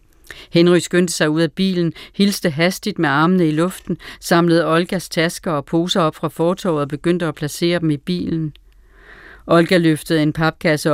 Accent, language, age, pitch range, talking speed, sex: native, Danish, 40-59, 150-170 Hz, 170 wpm, female